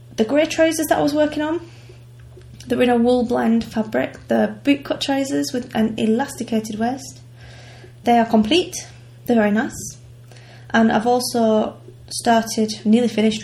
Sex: female